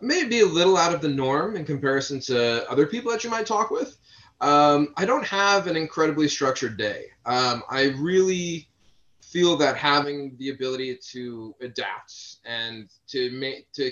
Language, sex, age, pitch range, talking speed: English, male, 30-49, 120-170 Hz, 170 wpm